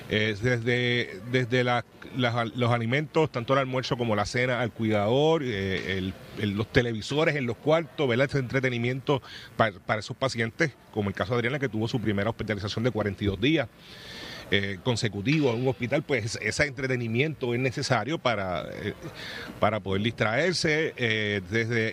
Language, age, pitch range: Spanish, 40-59, 105-135 Hz